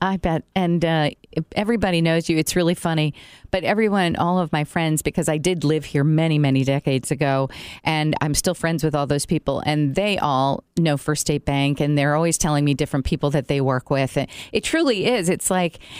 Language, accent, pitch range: English, American, 145-175 Hz